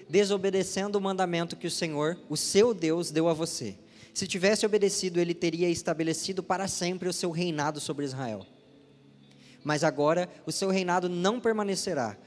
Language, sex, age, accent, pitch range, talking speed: Portuguese, male, 20-39, Brazilian, 150-195 Hz, 155 wpm